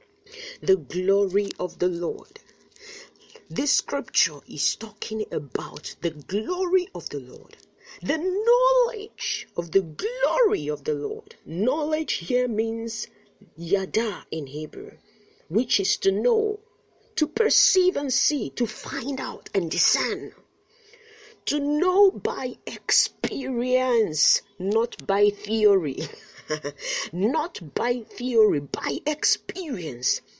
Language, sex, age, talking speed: English, female, 40-59, 105 wpm